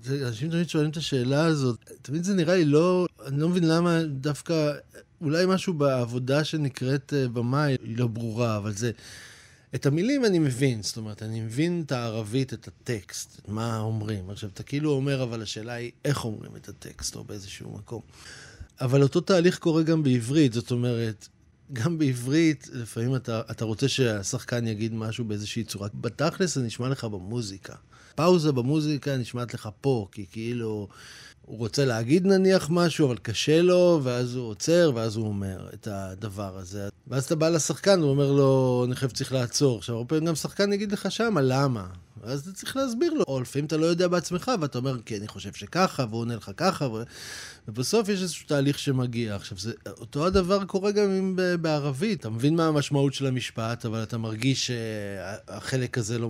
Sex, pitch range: male, 115-155 Hz